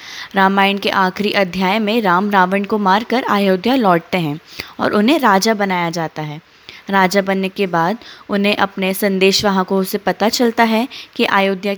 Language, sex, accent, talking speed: Hindi, female, native, 160 wpm